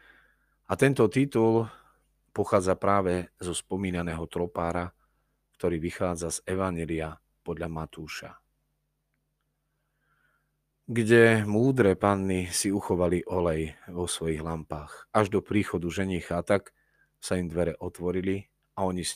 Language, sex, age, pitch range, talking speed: Slovak, male, 40-59, 85-110 Hz, 115 wpm